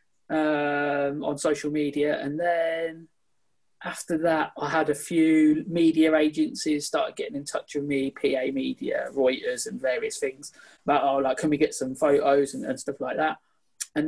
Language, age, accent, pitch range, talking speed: English, 20-39, British, 145-170 Hz, 170 wpm